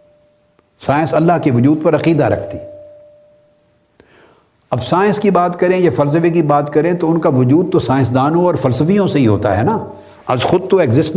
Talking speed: 185 wpm